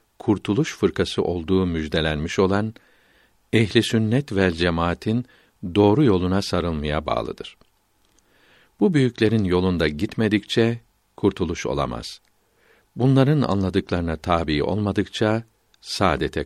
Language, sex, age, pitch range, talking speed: Turkish, male, 60-79, 90-110 Hz, 90 wpm